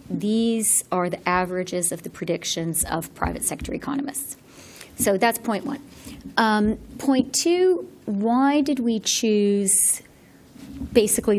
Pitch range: 180-255 Hz